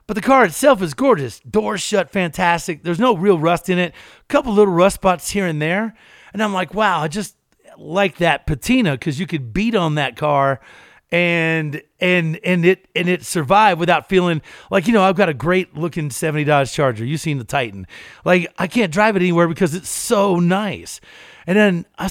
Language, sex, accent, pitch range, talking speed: English, male, American, 170-210 Hz, 205 wpm